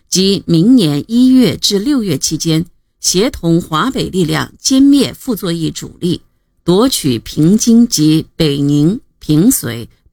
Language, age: Chinese, 50-69